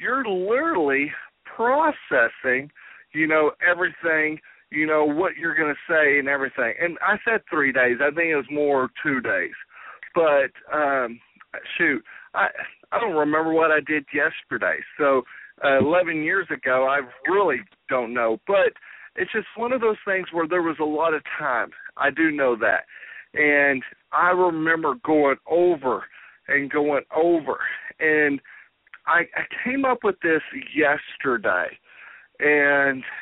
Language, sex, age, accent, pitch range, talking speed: English, male, 40-59, American, 145-175 Hz, 150 wpm